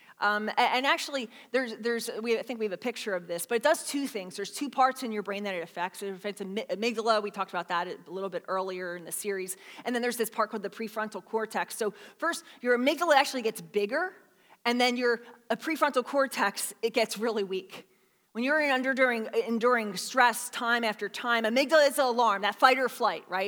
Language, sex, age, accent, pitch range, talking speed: English, female, 20-39, American, 215-295 Hz, 220 wpm